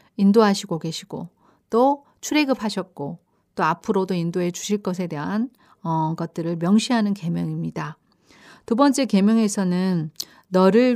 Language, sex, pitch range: Korean, female, 170-230 Hz